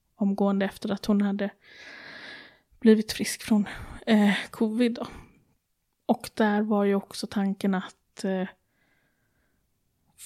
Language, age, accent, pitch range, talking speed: Swedish, 20-39, native, 195-225 Hz, 110 wpm